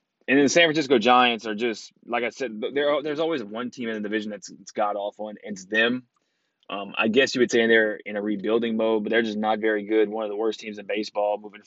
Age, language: 20-39, English